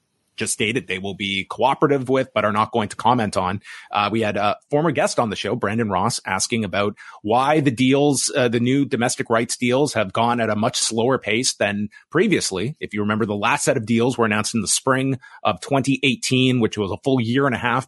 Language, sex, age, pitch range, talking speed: English, male, 30-49, 110-145 Hz, 230 wpm